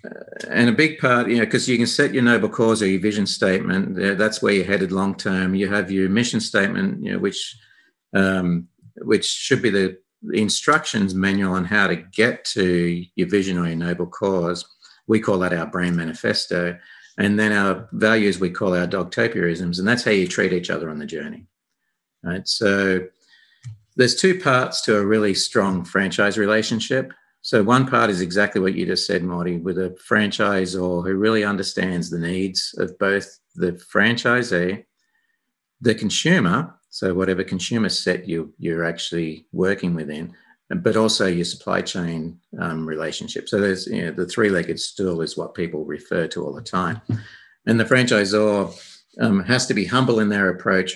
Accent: Australian